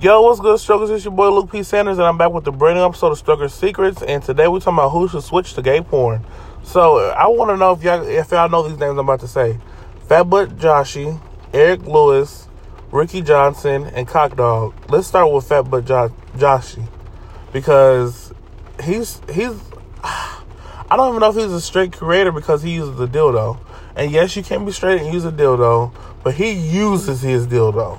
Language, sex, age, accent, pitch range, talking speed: English, male, 20-39, American, 130-180 Hz, 205 wpm